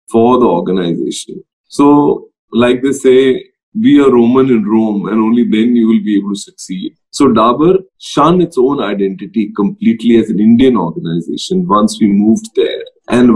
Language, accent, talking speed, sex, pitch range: English, Indian, 165 wpm, male, 110-170 Hz